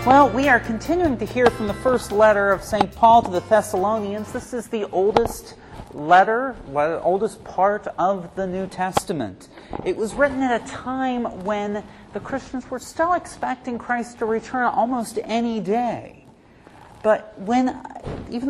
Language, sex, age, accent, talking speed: English, male, 40-59, American, 160 wpm